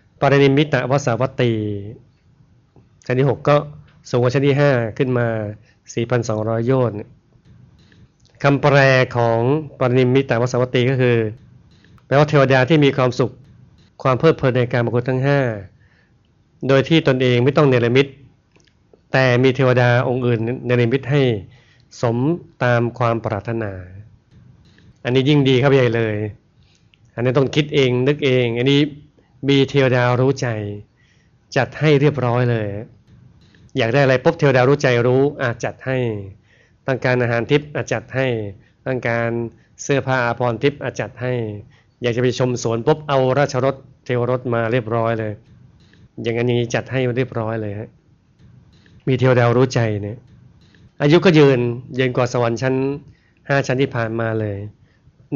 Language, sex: Thai, male